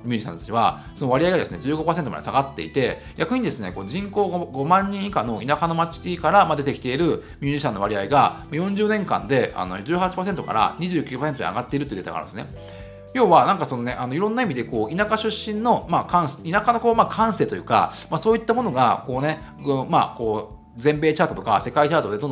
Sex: male